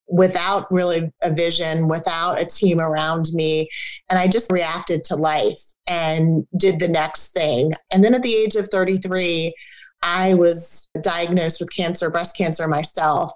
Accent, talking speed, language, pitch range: American, 155 wpm, English, 160-190 Hz